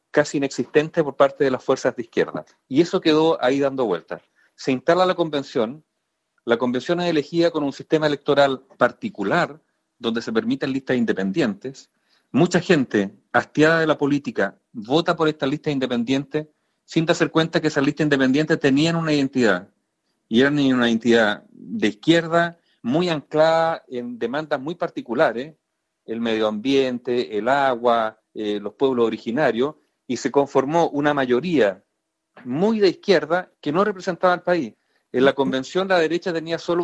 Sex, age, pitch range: male, 40-59, 135-170 Hz